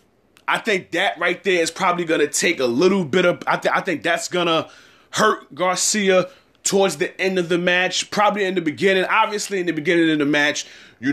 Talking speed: 215 wpm